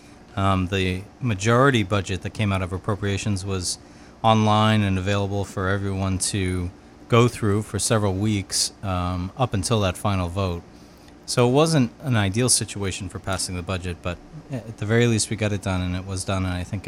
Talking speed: 185 wpm